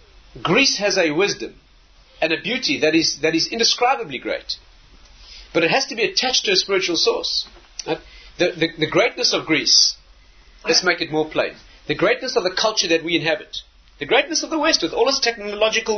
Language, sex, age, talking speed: English, male, 40-59, 195 wpm